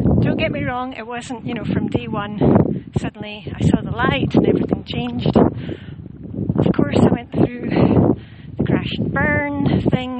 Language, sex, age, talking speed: English, female, 40-59, 170 wpm